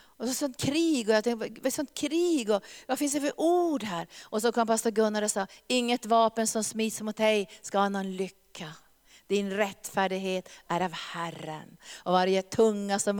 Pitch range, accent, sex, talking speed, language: 195-255 Hz, native, female, 200 wpm, Swedish